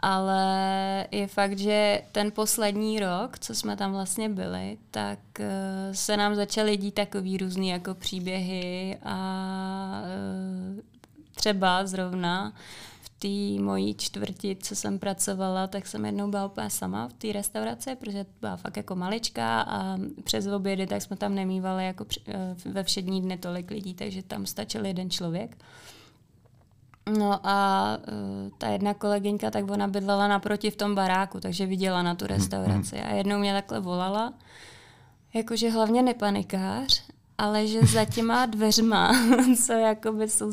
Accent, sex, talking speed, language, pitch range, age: native, female, 140 wpm, Czech, 140-210 Hz, 20-39